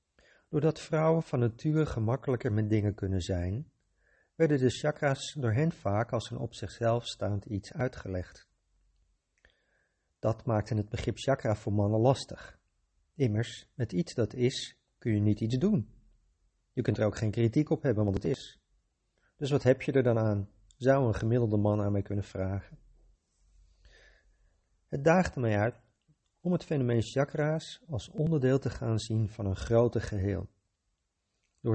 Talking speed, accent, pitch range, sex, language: 160 wpm, Dutch, 100-135 Hz, male, Dutch